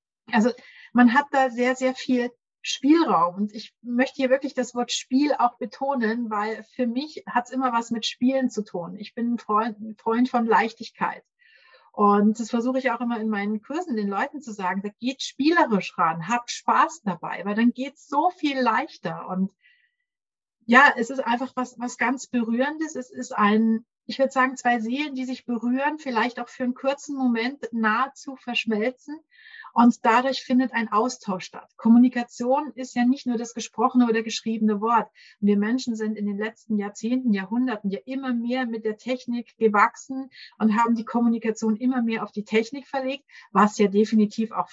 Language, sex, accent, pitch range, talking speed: German, female, German, 220-260 Hz, 180 wpm